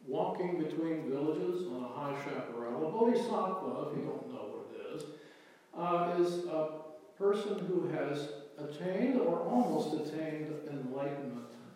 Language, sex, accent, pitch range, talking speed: English, male, American, 140-185 Hz, 140 wpm